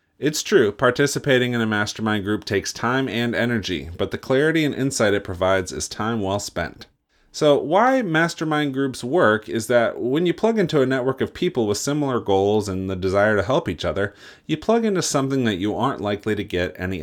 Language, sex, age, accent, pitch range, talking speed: English, male, 30-49, American, 95-130 Hz, 205 wpm